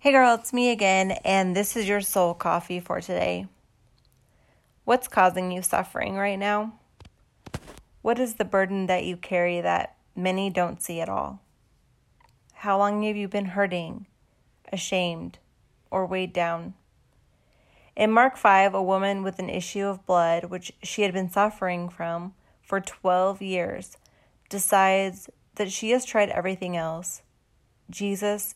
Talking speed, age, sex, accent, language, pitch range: 145 wpm, 30-49, female, American, English, 180-215 Hz